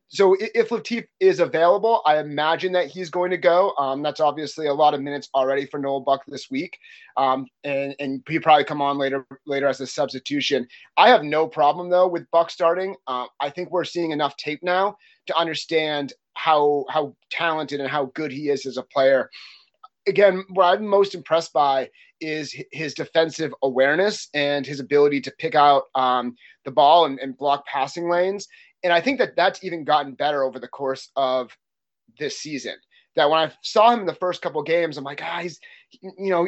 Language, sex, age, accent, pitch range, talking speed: English, male, 30-49, American, 145-180 Hz, 200 wpm